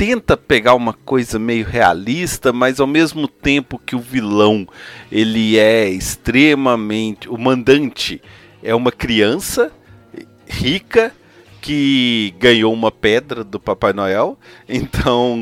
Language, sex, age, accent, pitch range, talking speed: Portuguese, male, 40-59, Brazilian, 110-135 Hz, 115 wpm